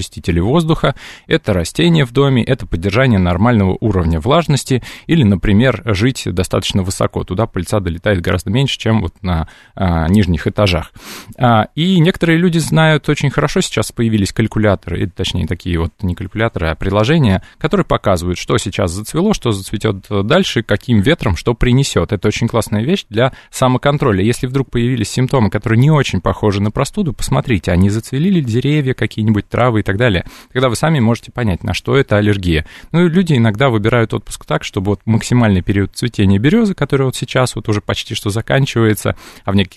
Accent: native